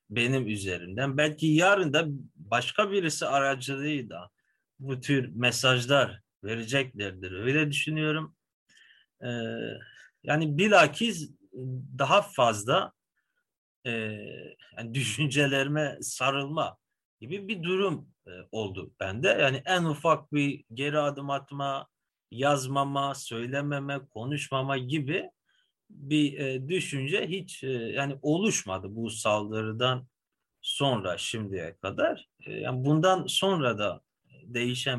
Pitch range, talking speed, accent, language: 120-155 Hz, 90 wpm, native, Turkish